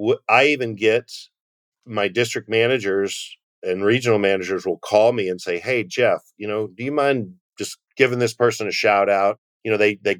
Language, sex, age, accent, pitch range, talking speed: English, male, 50-69, American, 105-150 Hz, 190 wpm